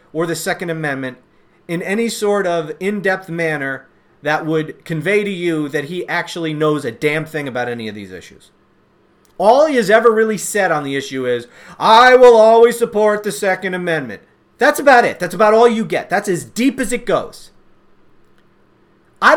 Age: 40-59